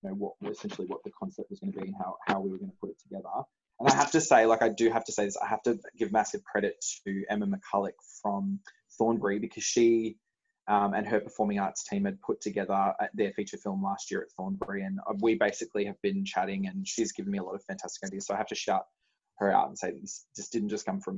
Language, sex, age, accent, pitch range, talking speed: English, male, 20-39, Australian, 105-150 Hz, 260 wpm